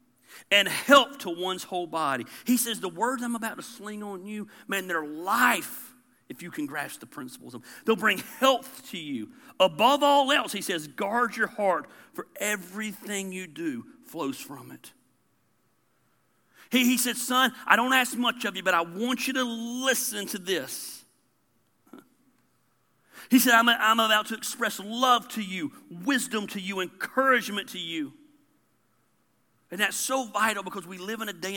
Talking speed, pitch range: 175 wpm, 185-255 Hz